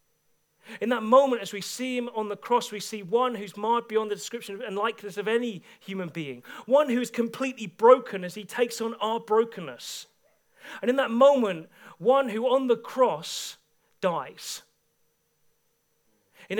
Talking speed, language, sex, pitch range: 165 wpm, English, male, 165-240 Hz